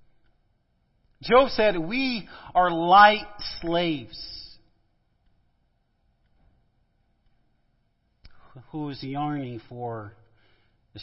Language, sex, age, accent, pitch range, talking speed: English, male, 40-59, American, 115-155 Hz, 60 wpm